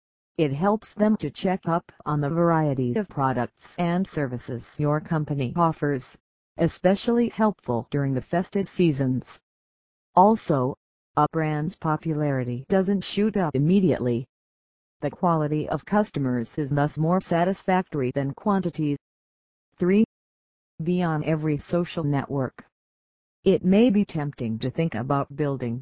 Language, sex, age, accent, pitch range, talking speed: English, female, 50-69, American, 135-180 Hz, 125 wpm